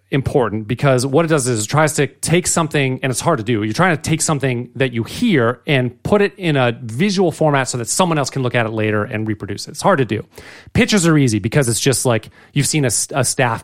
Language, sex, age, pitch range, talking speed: English, male, 30-49, 110-155 Hz, 260 wpm